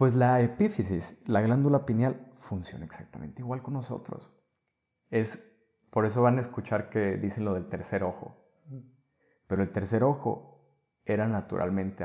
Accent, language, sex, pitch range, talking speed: Mexican, Spanish, male, 100-125 Hz, 145 wpm